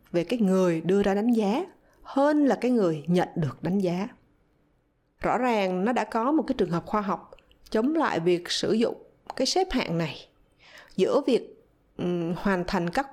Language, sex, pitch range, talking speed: Vietnamese, female, 190-275 Hz, 185 wpm